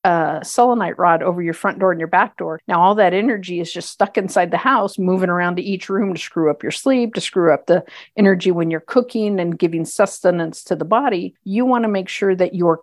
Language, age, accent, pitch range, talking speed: English, 50-69, American, 165-195 Hz, 245 wpm